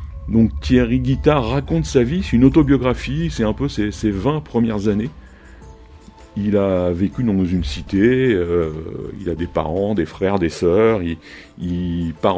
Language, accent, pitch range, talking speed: French, French, 90-115 Hz, 170 wpm